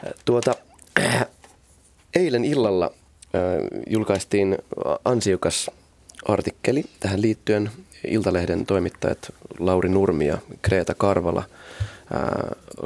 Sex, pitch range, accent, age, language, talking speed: male, 85-105 Hz, native, 30-49, Finnish, 85 wpm